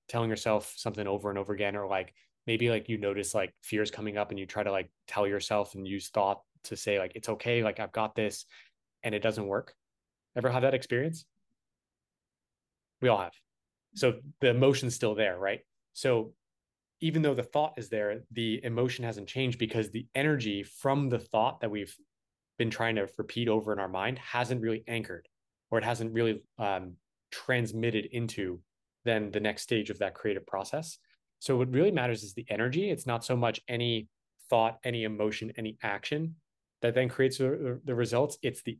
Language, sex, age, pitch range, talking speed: English, male, 20-39, 105-125 Hz, 190 wpm